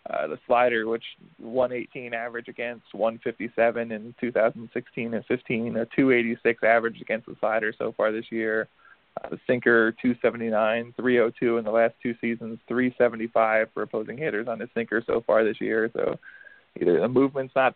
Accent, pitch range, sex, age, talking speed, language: American, 115-125 Hz, male, 20-39, 160 wpm, English